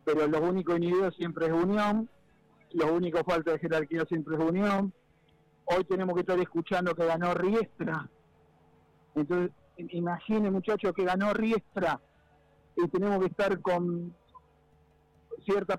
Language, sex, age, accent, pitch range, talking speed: Spanish, male, 50-69, Argentinian, 155-195 Hz, 135 wpm